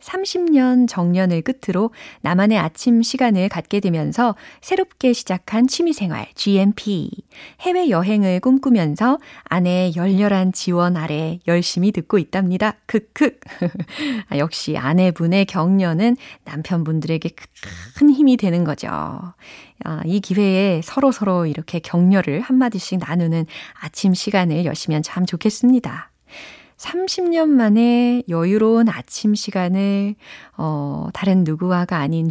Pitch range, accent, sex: 165-225 Hz, native, female